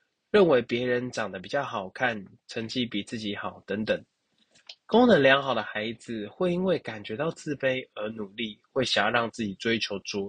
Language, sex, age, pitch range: Chinese, male, 20-39, 110-160 Hz